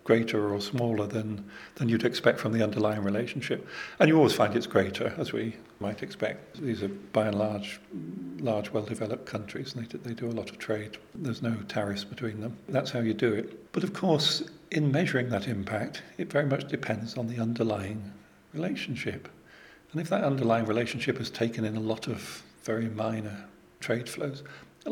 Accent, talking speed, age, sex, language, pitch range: British, 190 wpm, 40-59, male, English, 110-130 Hz